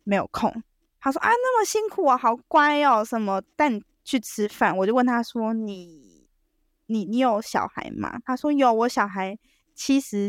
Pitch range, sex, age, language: 215-305 Hz, female, 20-39, Chinese